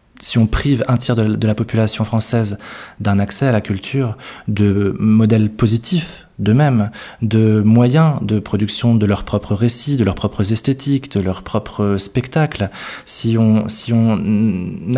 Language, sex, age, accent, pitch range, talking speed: French, male, 20-39, French, 105-125 Hz, 150 wpm